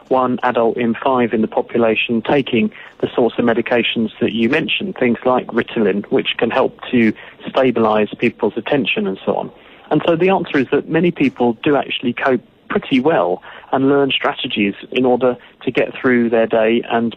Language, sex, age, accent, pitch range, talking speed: English, male, 40-59, British, 115-140 Hz, 180 wpm